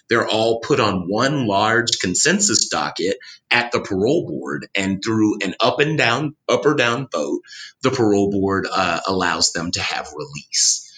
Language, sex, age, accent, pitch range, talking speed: English, male, 30-49, American, 95-115 Hz, 170 wpm